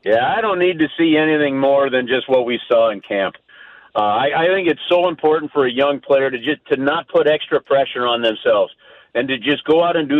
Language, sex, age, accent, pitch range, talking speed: English, male, 50-69, American, 135-195 Hz, 245 wpm